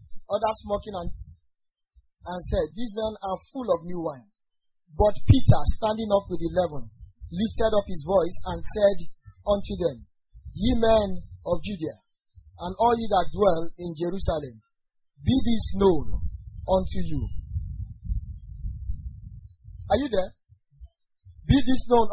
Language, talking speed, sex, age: English, 130 wpm, male, 40-59